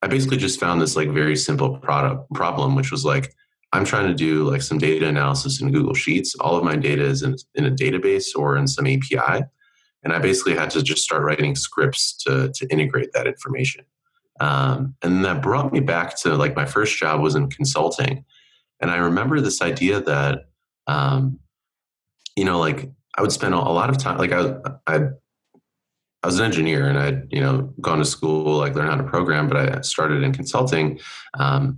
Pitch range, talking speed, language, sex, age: 85-140 Hz, 200 wpm, English, male, 30-49